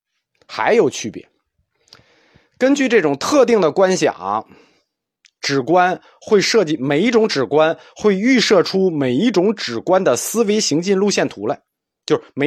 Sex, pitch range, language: male, 145-230 Hz, Chinese